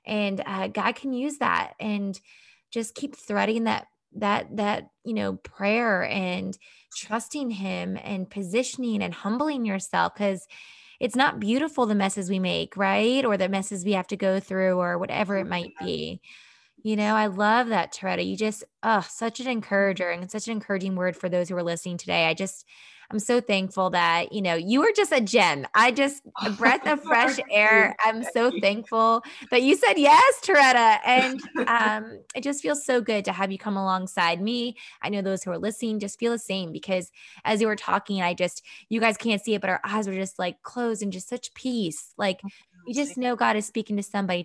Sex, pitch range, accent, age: female, 190-230 Hz, American, 20-39